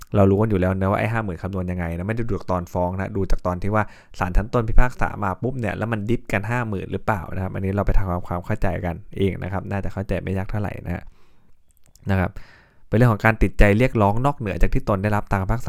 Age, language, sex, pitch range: 20-39, Thai, male, 95-110 Hz